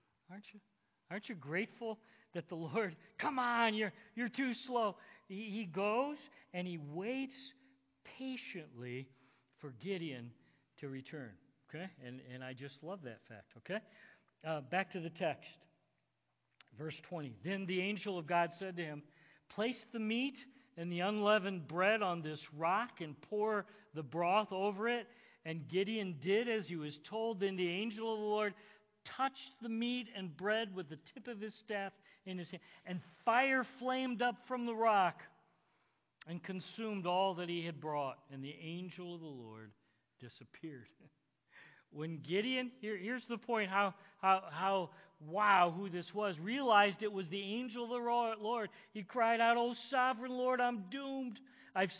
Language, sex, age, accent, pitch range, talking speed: English, male, 50-69, American, 165-230 Hz, 165 wpm